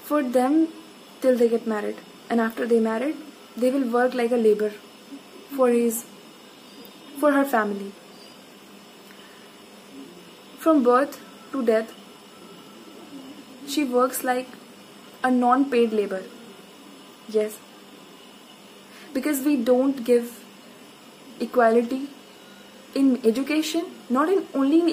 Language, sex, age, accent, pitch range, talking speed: Hindi, female, 20-39, native, 235-280 Hz, 105 wpm